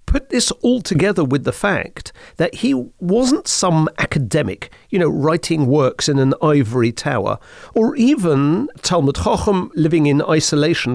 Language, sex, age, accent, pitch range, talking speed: English, male, 50-69, British, 140-190 Hz, 150 wpm